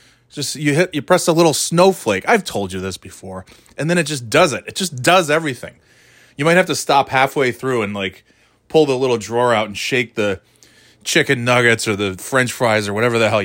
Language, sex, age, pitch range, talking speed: English, male, 30-49, 105-135 Hz, 225 wpm